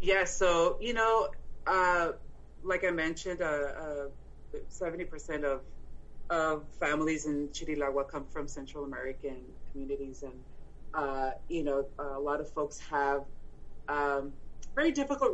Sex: female